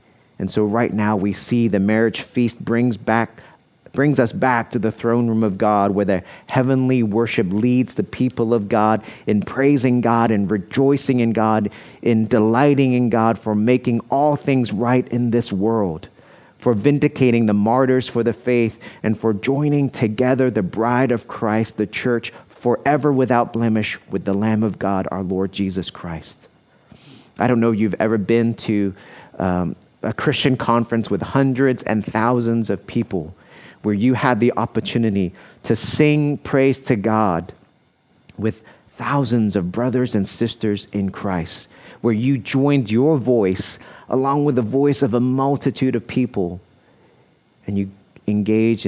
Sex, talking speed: male, 160 wpm